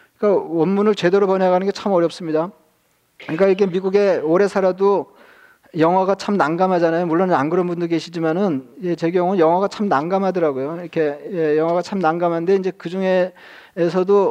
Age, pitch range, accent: 40-59, 165-195 Hz, native